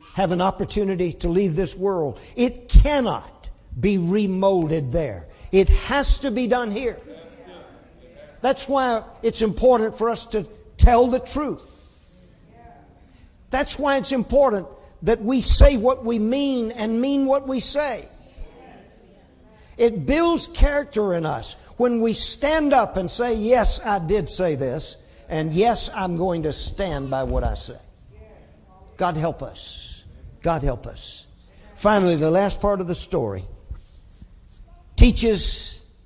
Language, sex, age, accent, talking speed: English, male, 50-69, American, 140 wpm